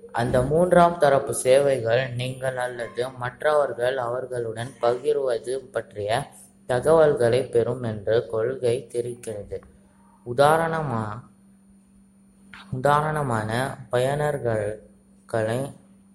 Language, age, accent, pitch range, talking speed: Tamil, 20-39, native, 120-155 Hz, 65 wpm